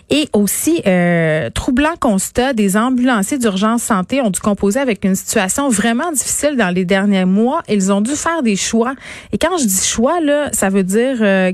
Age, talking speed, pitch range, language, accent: 30-49, 190 wpm, 190-245 Hz, French, Canadian